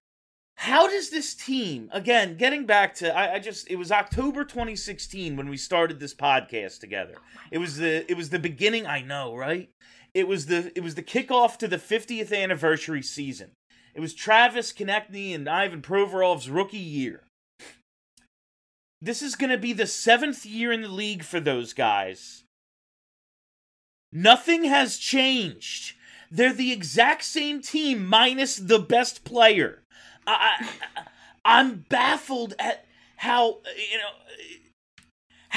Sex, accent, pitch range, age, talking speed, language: male, American, 180-245 Hz, 30-49, 145 wpm, English